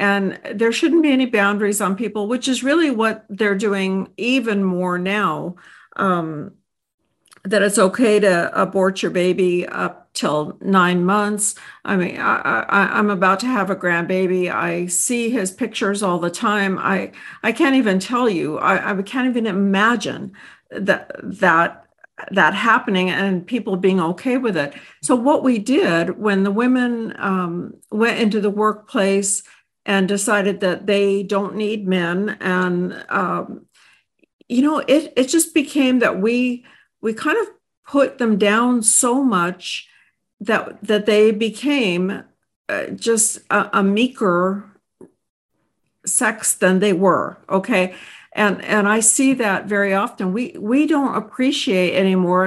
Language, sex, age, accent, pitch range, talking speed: English, female, 50-69, American, 190-240 Hz, 150 wpm